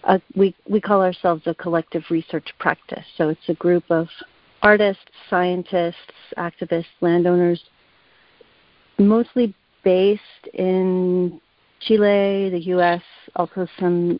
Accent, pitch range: American, 175-210 Hz